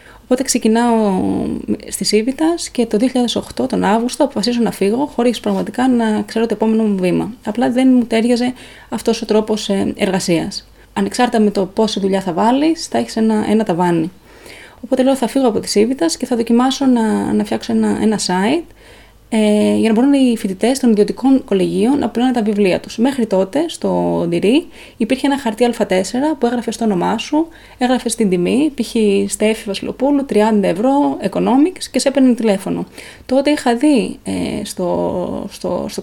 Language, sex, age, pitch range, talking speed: Greek, female, 20-39, 200-260 Hz, 165 wpm